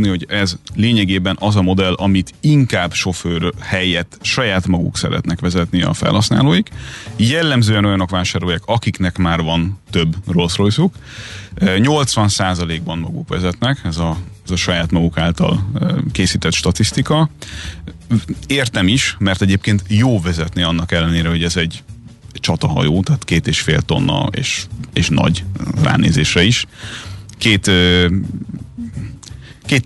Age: 30-49